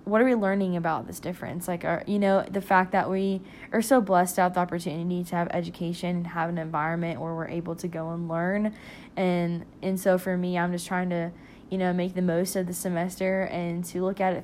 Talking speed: 235 wpm